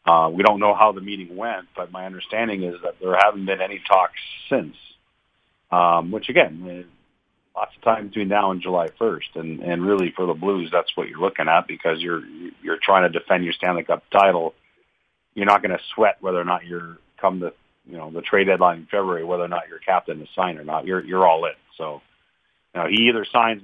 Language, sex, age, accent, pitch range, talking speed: English, male, 40-59, American, 85-100 Hz, 225 wpm